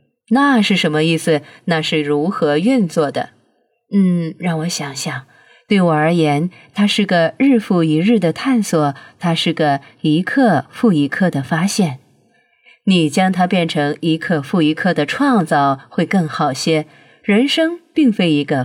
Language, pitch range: Chinese, 150-200 Hz